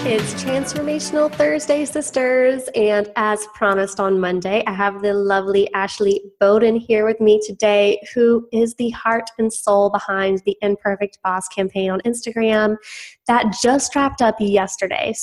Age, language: 20-39, English